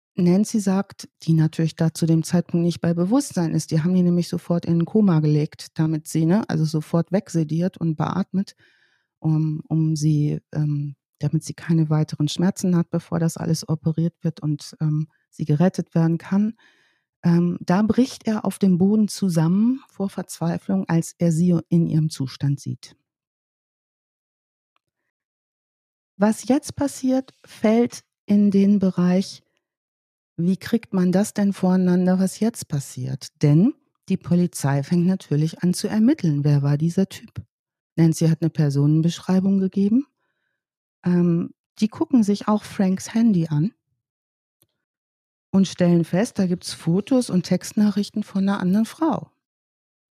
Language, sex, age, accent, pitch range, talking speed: German, female, 40-59, German, 160-200 Hz, 145 wpm